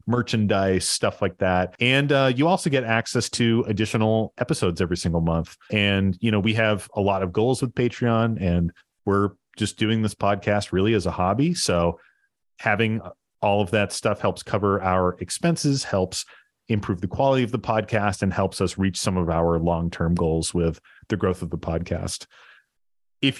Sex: male